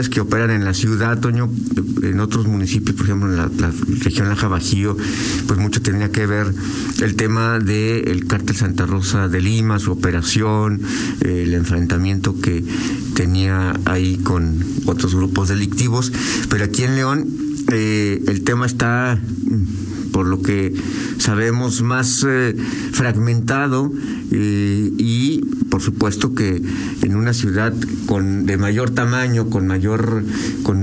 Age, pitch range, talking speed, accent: 50-69, 100-125 Hz, 140 wpm, Mexican